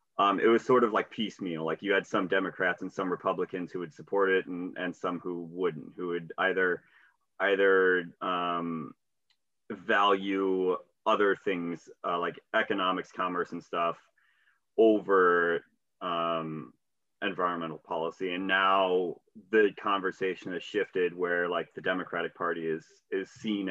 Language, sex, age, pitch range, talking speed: English, male, 30-49, 85-110 Hz, 140 wpm